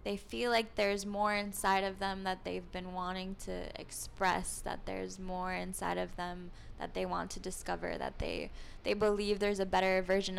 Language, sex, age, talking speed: English, female, 10-29, 190 wpm